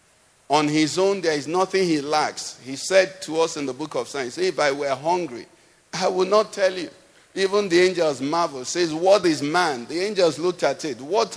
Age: 50-69